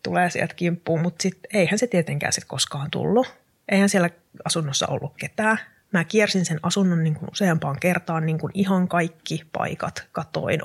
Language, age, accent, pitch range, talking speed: Finnish, 30-49, native, 150-185 Hz, 160 wpm